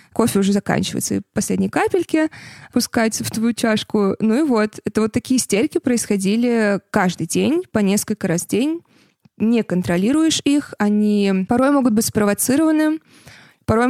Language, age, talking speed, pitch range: Russian, 20-39, 145 wpm, 185-230 Hz